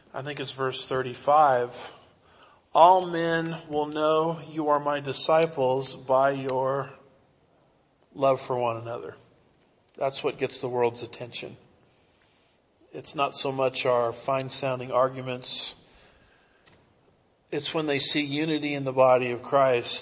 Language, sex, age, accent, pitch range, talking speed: English, male, 40-59, American, 125-150 Hz, 130 wpm